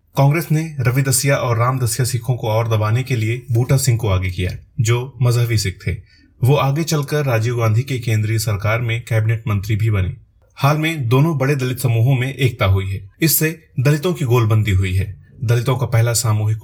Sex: male